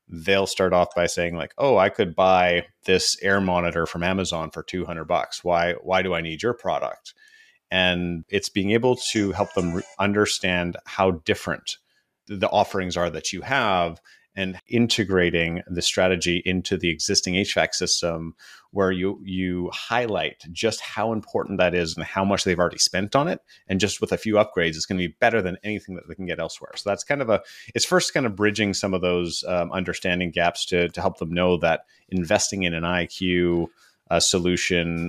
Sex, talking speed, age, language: male, 195 wpm, 30-49, English